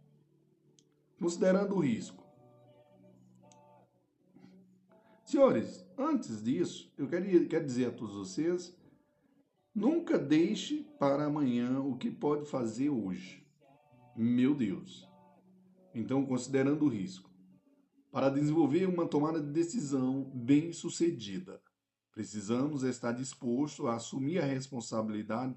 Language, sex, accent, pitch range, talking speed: Portuguese, male, Brazilian, 120-180 Hz, 100 wpm